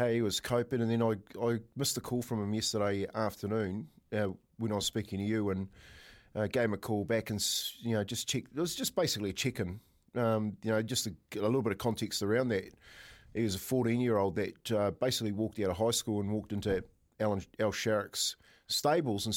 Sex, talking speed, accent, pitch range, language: male, 230 wpm, Australian, 105-125 Hz, English